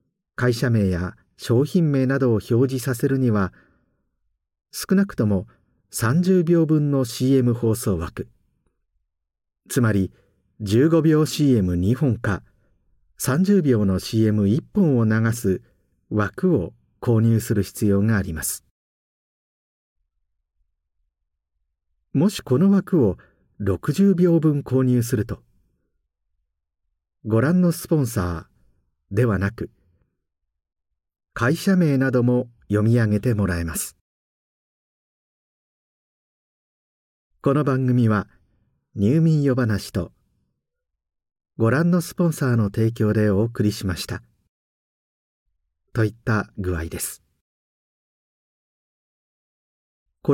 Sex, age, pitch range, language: male, 50-69, 85-130 Hz, Japanese